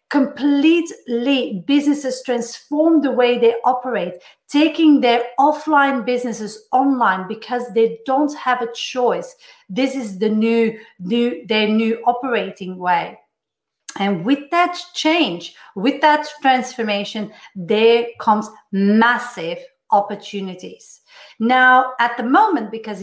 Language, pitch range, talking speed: English, 215-270 Hz, 110 wpm